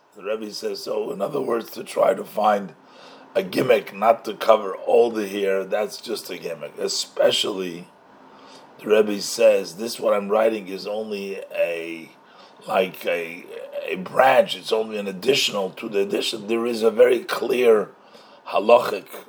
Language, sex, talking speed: English, male, 160 wpm